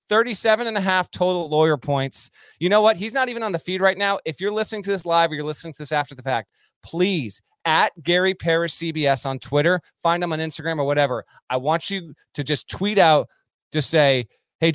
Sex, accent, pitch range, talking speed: male, American, 140-180 Hz, 225 wpm